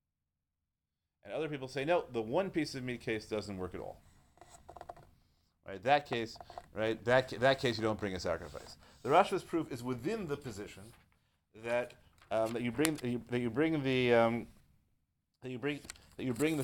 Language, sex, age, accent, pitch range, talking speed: English, male, 30-49, American, 105-135 Hz, 125 wpm